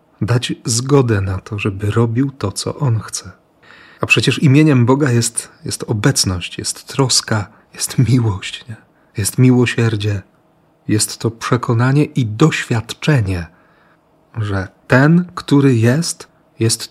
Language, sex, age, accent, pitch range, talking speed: Polish, male, 40-59, native, 105-145 Hz, 115 wpm